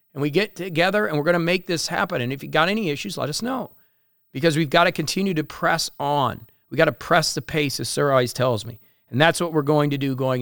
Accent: American